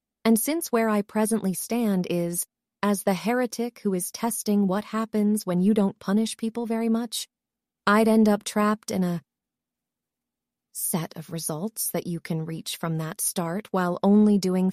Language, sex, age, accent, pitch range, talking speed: English, female, 30-49, American, 190-235 Hz, 165 wpm